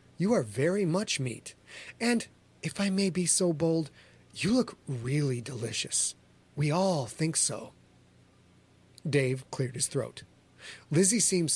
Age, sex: 30-49, male